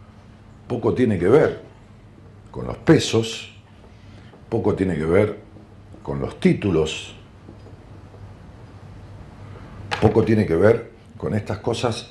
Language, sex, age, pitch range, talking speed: Spanish, male, 50-69, 95-110 Hz, 105 wpm